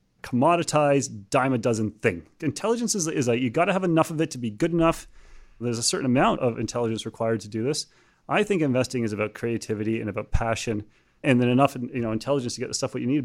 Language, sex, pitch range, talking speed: English, male, 120-160 Hz, 235 wpm